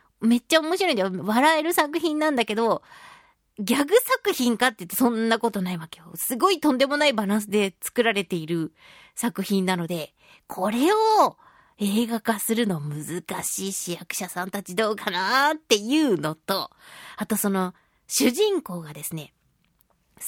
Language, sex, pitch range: Japanese, female, 185-260 Hz